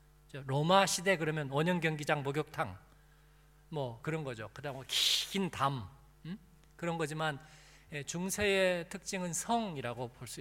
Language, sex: Korean, male